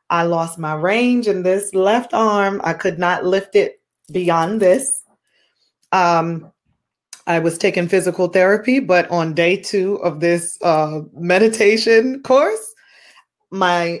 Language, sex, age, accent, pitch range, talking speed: English, female, 30-49, American, 160-200 Hz, 135 wpm